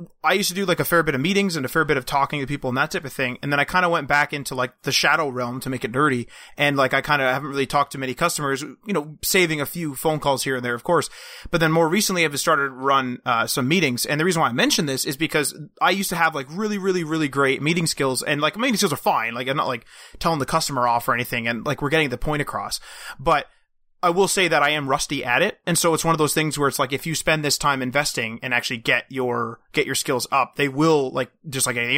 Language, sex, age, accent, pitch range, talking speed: English, male, 30-49, American, 135-160 Hz, 290 wpm